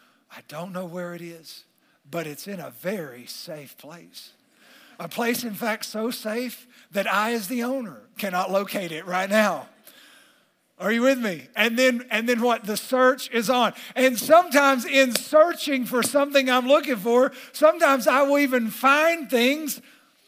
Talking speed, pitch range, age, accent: 170 wpm, 185-255 Hz, 50-69, American